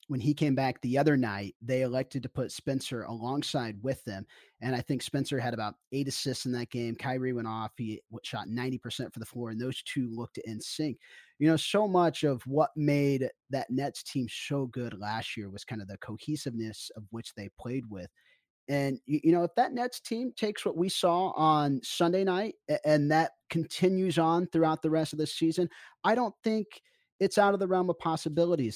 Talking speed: 205 wpm